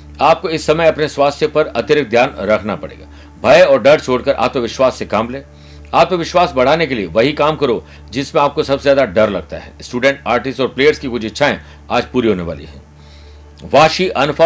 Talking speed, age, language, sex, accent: 160 wpm, 60-79, Hindi, male, native